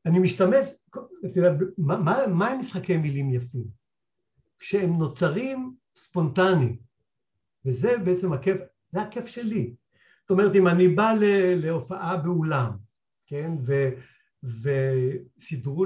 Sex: male